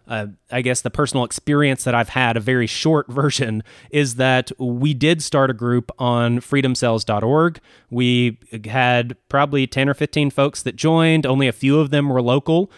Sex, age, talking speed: male, 20-39, 180 wpm